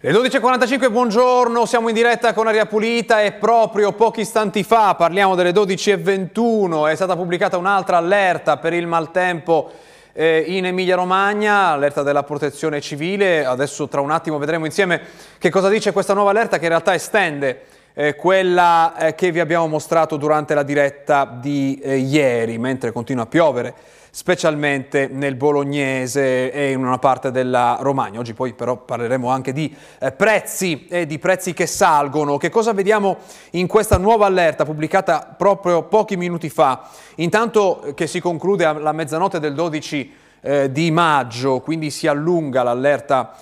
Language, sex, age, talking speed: Italian, male, 30-49, 160 wpm